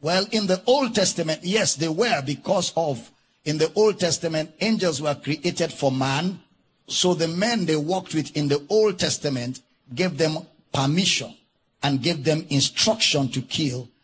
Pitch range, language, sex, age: 140-180 Hz, English, male, 50-69